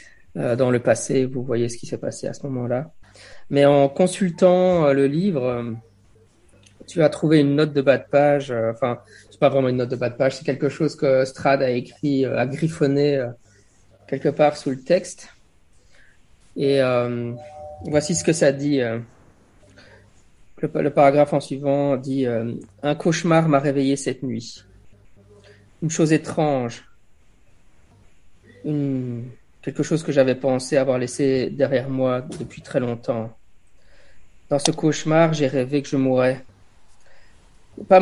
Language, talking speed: English, 150 wpm